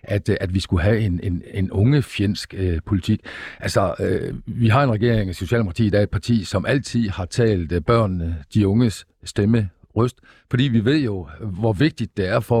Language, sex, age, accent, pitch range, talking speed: Danish, male, 50-69, native, 95-115 Hz, 200 wpm